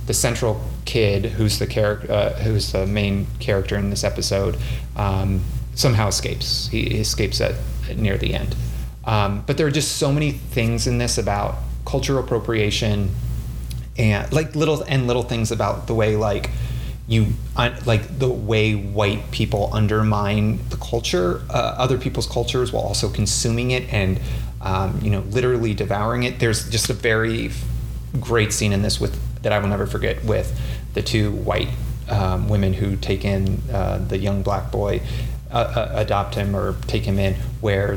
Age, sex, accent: 30-49, male, American